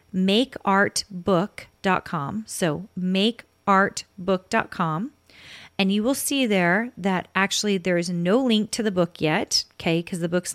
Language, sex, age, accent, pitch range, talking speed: English, female, 30-49, American, 180-220 Hz, 125 wpm